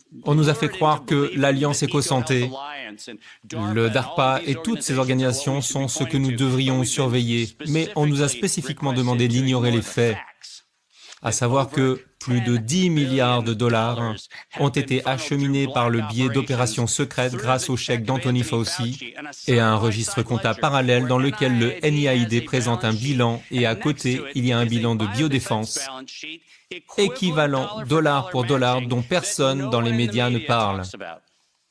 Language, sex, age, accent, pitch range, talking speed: French, male, 40-59, French, 120-145 Hz, 160 wpm